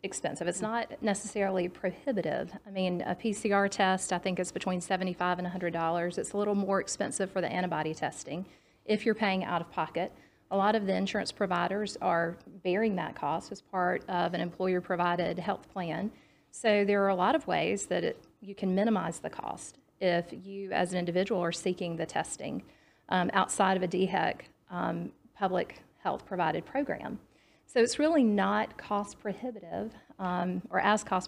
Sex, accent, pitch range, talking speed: female, American, 180-210 Hz, 175 wpm